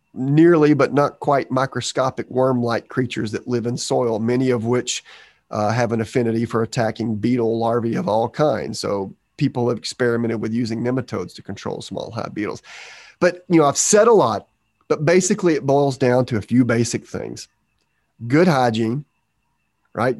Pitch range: 115-135 Hz